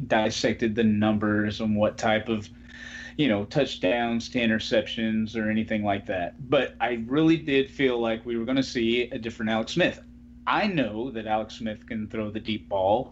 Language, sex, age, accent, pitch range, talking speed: English, male, 30-49, American, 80-130 Hz, 190 wpm